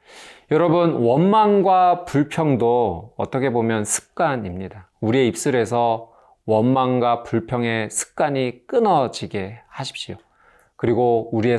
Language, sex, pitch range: Korean, male, 105-135 Hz